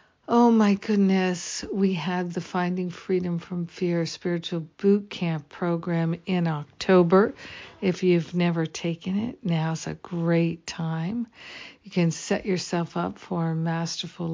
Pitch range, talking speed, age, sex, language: 165-185 Hz, 135 wpm, 60-79, female, English